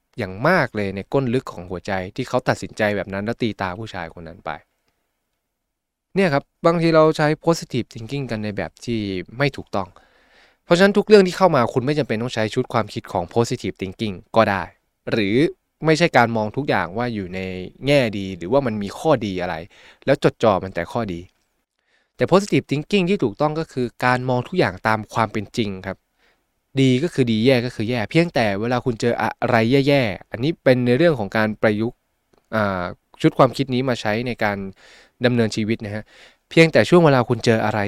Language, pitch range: Thai, 100-135 Hz